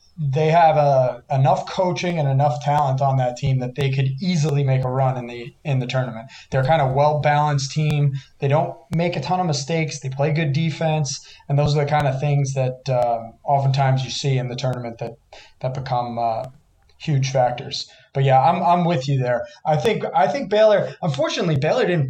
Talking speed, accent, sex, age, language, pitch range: 210 wpm, American, male, 20-39, English, 135-160 Hz